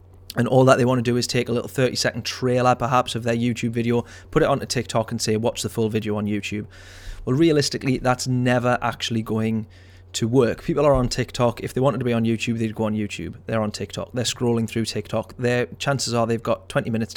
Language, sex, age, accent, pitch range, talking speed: English, male, 30-49, British, 110-125 Hz, 240 wpm